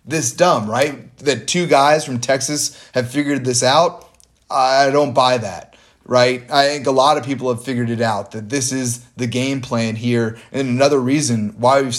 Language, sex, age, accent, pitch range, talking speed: English, male, 30-49, American, 120-145 Hz, 195 wpm